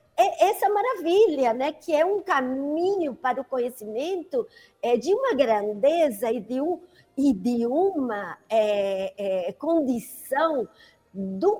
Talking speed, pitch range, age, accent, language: 125 wpm, 245-340 Hz, 50-69, Brazilian, Portuguese